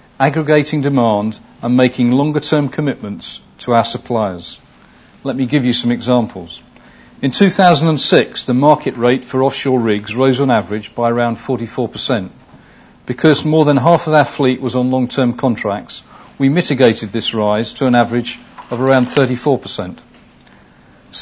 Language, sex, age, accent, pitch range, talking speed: English, male, 50-69, British, 115-145 Hz, 140 wpm